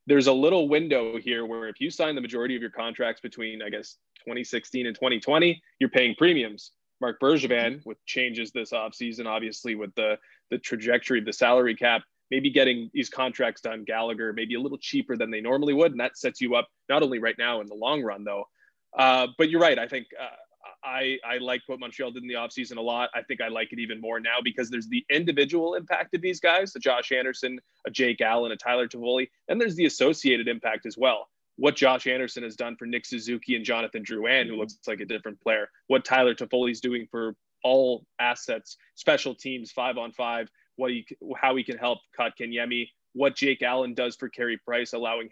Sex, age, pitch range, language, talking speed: male, 20-39, 115-130 Hz, English, 210 wpm